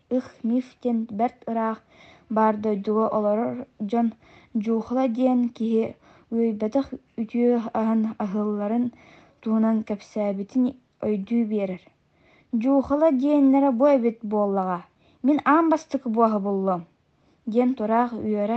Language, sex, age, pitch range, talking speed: Russian, female, 20-39, 215-250 Hz, 105 wpm